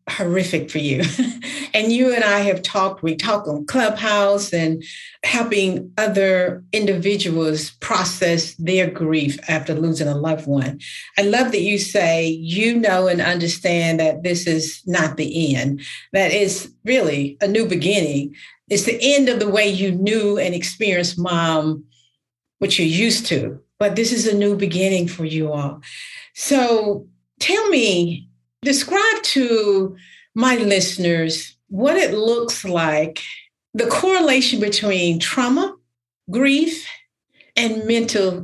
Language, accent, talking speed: English, American, 135 wpm